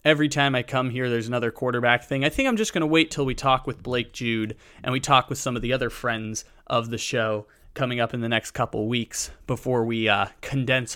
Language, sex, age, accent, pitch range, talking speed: English, male, 20-39, American, 115-145 Hz, 245 wpm